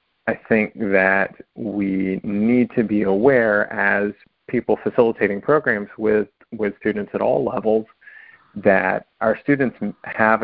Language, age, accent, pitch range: English, 40-59, American, 100-110 Hz